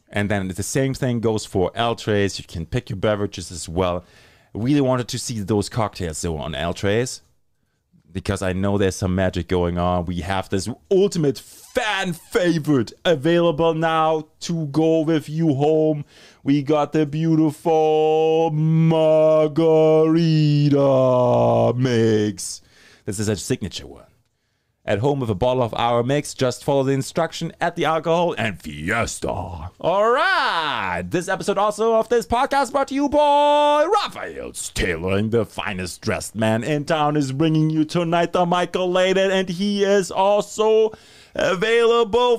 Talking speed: 150 wpm